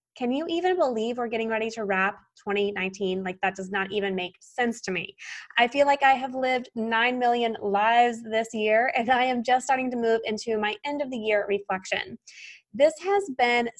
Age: 20-39